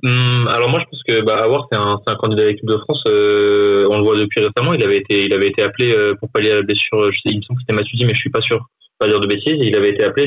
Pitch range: 105-150 Hz